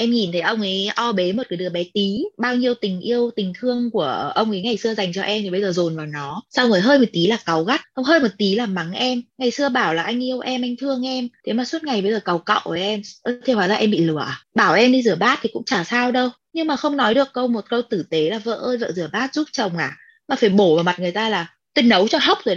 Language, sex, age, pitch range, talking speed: Vietnamese, female, 20-39, 190-255 Hz, 305 wpm